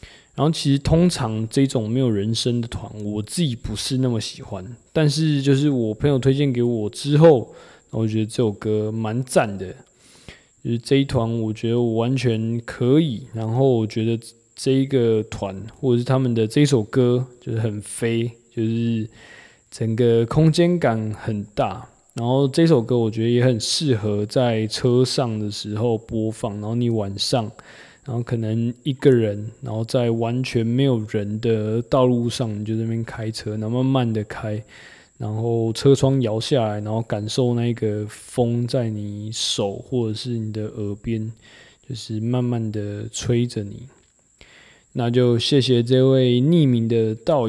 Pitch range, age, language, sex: 110-130 Hz, 20-39, Chinese, male